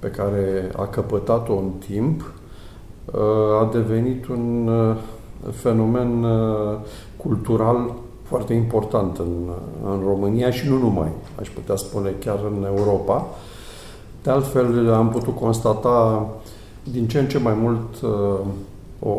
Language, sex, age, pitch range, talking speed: Romanian, male, 50-69, 100-120 Hz, 115 wpm